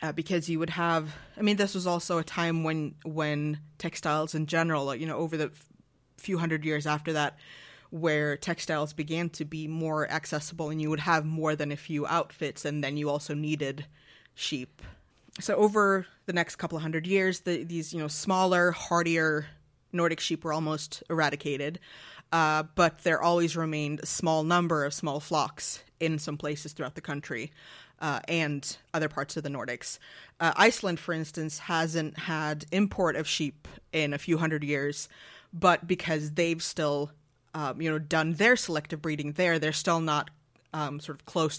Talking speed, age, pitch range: 180 wpm, 20-39, 150-170 Hz